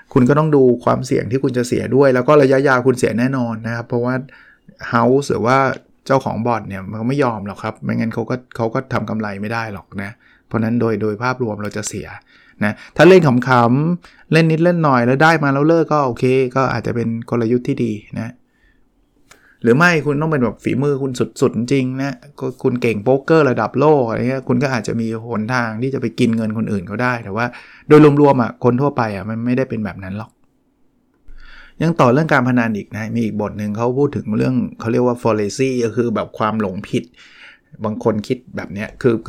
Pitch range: 115-135 Hz